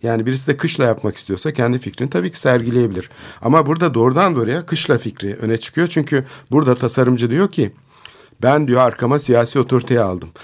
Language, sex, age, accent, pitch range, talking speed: Turkish, male, 50-69, native, 110-145 Hz, 175 wpm